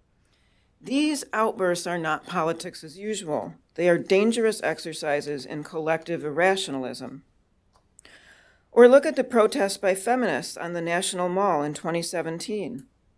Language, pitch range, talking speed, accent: English, 165-215 Hz, 125 wpm, American